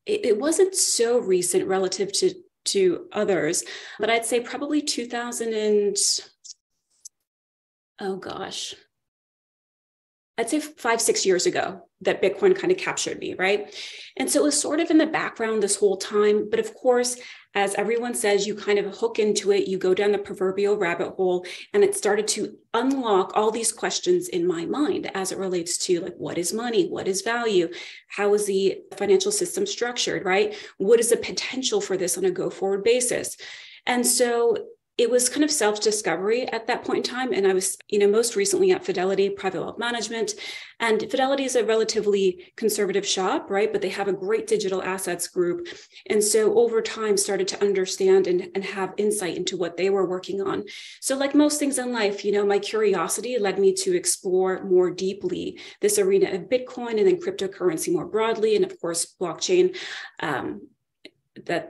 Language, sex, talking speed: English, female, 180 wpm